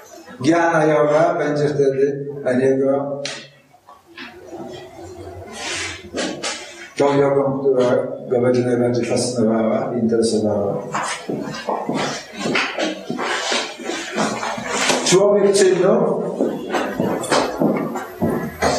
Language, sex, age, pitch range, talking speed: Polish, male, 50-69, 110-145 Hz, 55 wpm